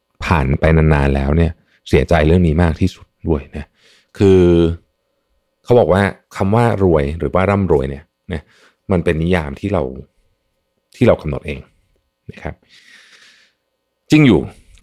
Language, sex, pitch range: Thai, male, 75-100 Hz